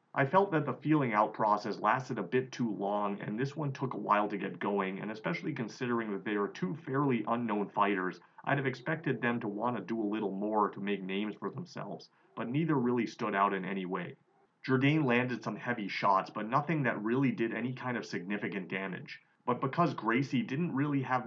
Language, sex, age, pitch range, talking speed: English, male, 30-49, 100-125 Hz, 210 wpm